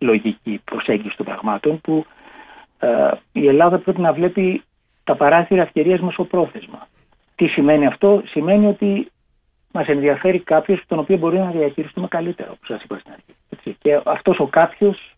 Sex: male